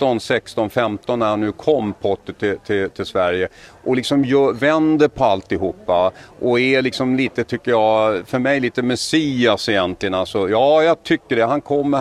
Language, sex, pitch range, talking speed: English, male, 95-125 Hz, 170 wpm